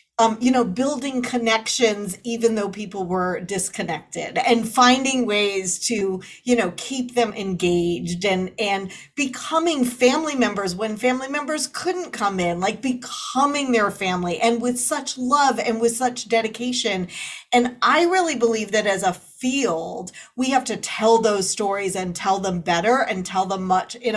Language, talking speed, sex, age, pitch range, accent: English, 160 wpm, female, 40-59, 205-255 Hz, American